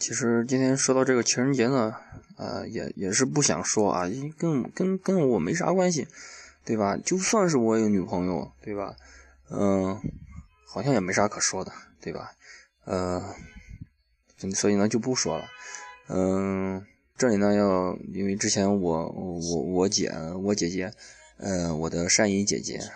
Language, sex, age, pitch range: Chinese, male, 20-39, 95-115 Hz